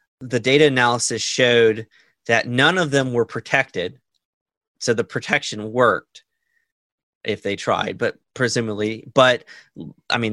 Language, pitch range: English, 115-140 Hz